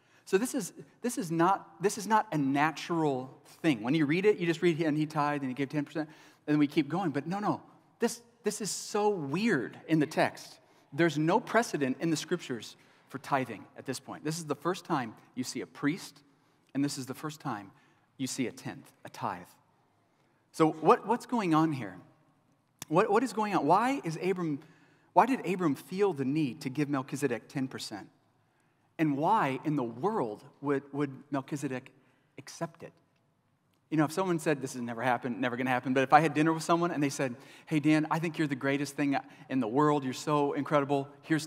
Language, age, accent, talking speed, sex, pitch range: English, 30-49, American, 210 wpm, male, 140-165 Hz